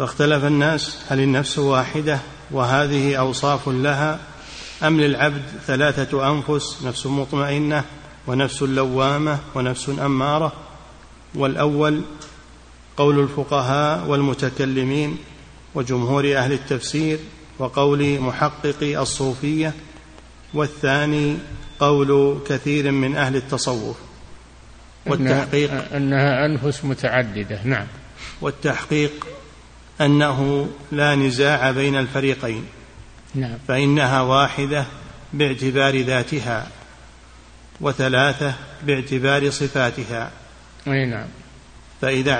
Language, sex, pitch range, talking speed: Arabic, male, 130-145 Hz, 75 wpm